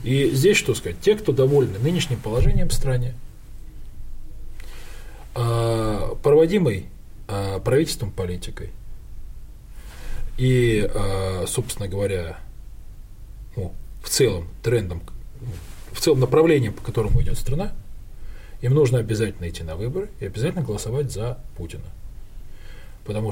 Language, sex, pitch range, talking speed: Russian, male, 95-130 Hz, 105 wpm